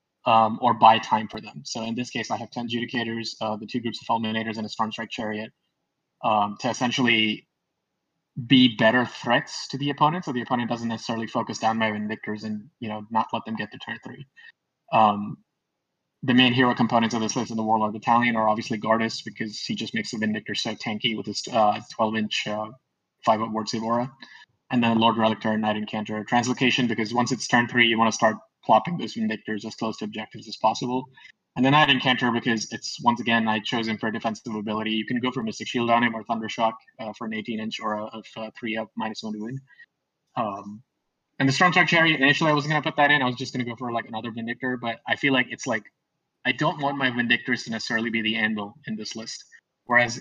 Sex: male